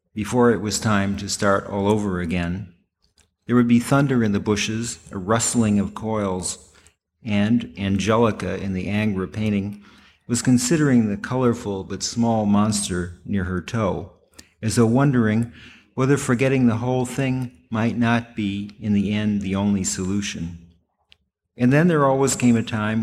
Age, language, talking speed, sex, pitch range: 50-69, English, 155 wpm, male, 95-115 Hz